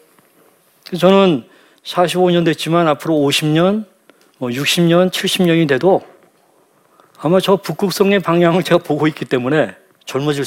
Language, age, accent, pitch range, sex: Korean, 40-59, native, 135-190 Hz, male